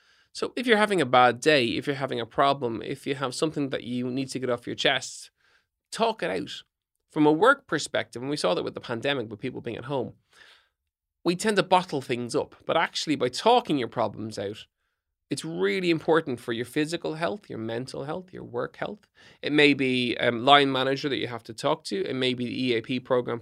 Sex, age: male, 20-39